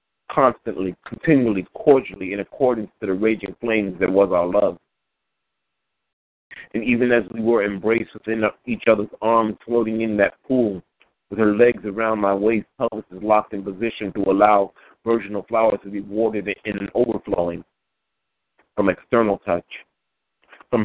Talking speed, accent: 150 wpm, American